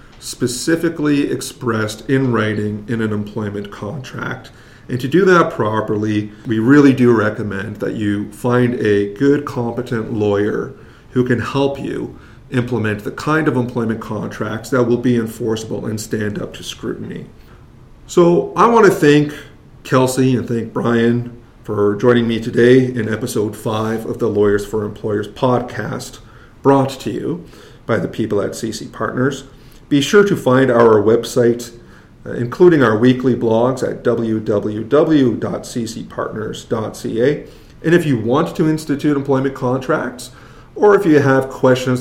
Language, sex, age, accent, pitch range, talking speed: English, male, 40-59, American, 110-135 Hz, 140 wpm